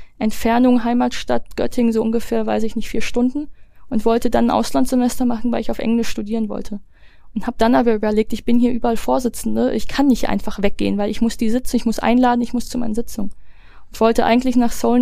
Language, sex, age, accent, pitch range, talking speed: German, female, 20-39, German, 220-245 Hz, 215 wpm